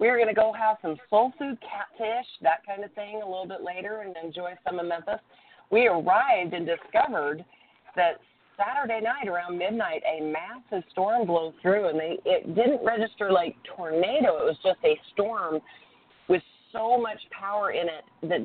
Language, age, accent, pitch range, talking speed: English, 40-59, American, 160-210 Hz, 180 wpm